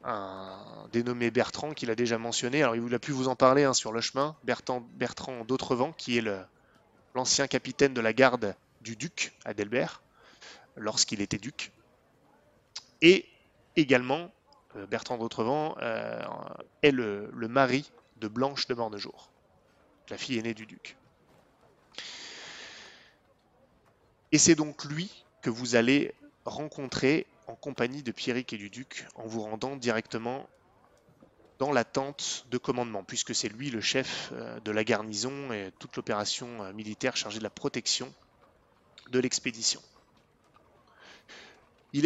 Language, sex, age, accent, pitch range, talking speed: French, male, 20-39, French, 115-140 Hz, 135 wpm